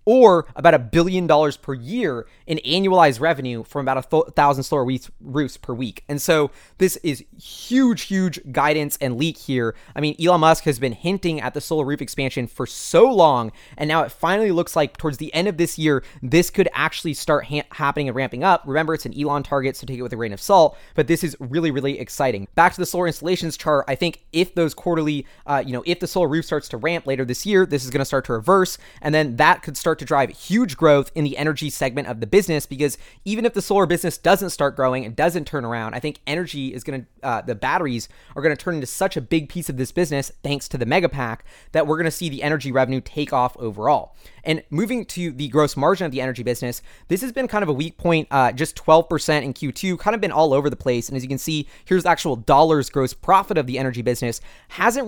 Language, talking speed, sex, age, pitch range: English, 240 wpm, male, 20-39, 135-170 Hz